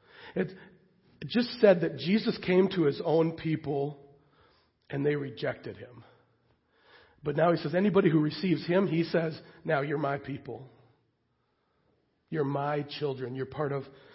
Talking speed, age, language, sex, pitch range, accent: 145 wpm, 40-59, English, male, 145-180 Hz, American